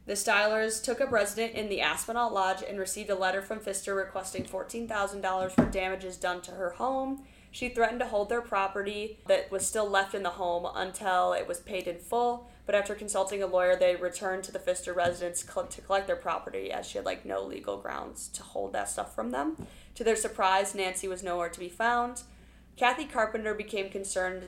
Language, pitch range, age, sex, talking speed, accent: English, 180-215 Hz, 10-29, female, 205 wpm, American